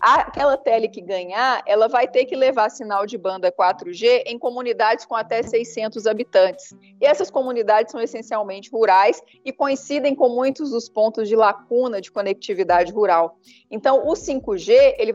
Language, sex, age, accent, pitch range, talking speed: English, female, 30-49, Brazilian, 195-245 Hz, 160 wpm